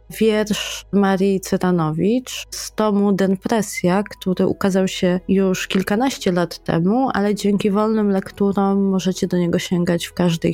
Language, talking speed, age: Polish, 130 wpm, 20-39